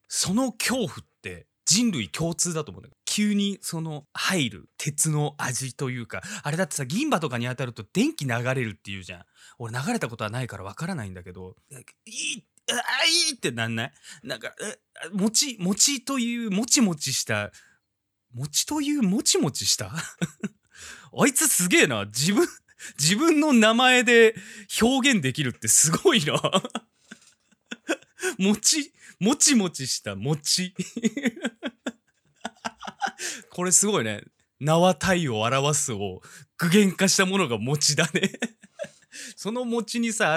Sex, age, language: male, 20-39, Japanese